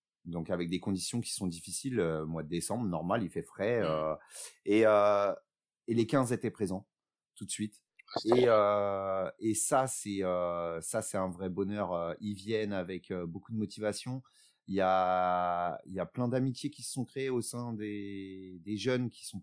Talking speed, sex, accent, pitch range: 200 wpm, male, French, 95-115 Hz